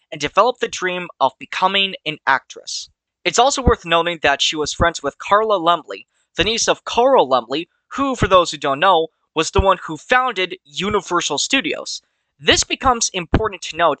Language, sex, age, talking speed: English, male, 20-39, 180 wpm